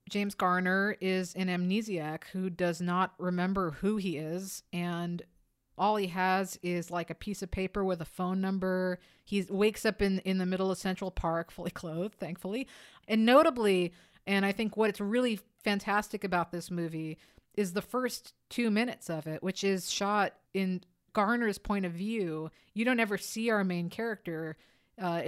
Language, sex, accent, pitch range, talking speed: English, female, American, 175-205 Hz, 175 wpm